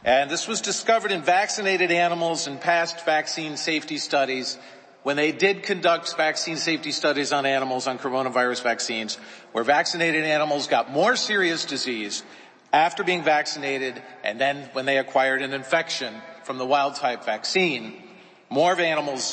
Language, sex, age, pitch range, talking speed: English, male, 40-59, 140-175 Hz, 150 wpm